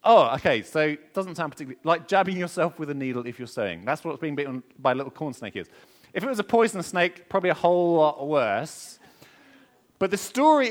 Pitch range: 130-195 Hz